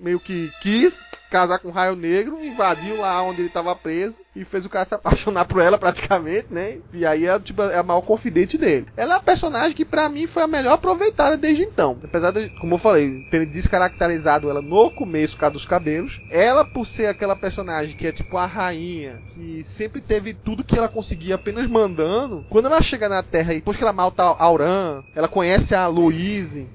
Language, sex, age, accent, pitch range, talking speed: Portuguese, male, 20-39, Brazilian, 160-215 Hz, 210 wpm